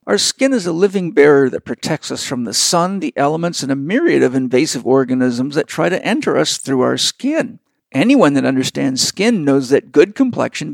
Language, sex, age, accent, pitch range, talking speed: English, male, 50-69, American, 130-200 Hz, 200 wpm